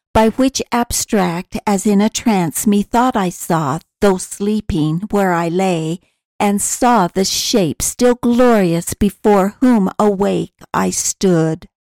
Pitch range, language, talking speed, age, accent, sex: 180-230 Hz, English, 130 wpm, 60-79, American, female